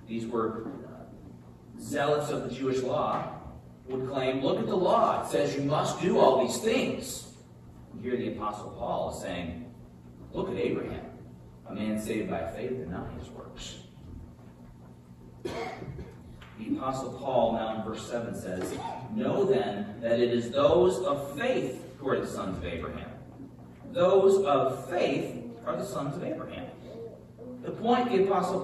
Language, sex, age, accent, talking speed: English, male, 40-59, American, 155 wpm